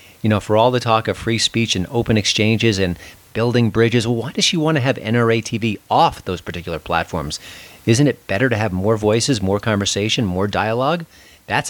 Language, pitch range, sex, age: English, 95-120 Hz, male, 40-59